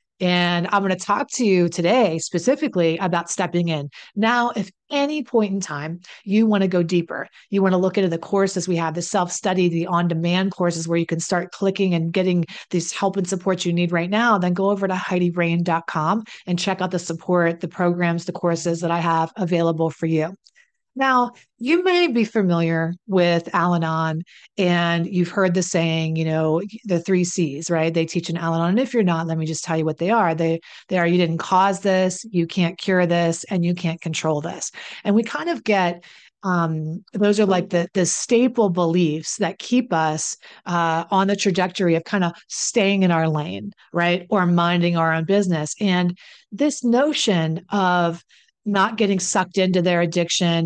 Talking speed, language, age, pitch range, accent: 195 wpm, English, 30-49, 170-195 Hz, American